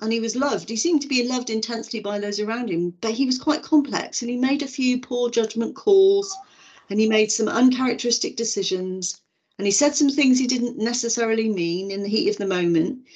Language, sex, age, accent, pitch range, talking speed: English, female, 40-59, British, 180-255 Hz, 220 wpm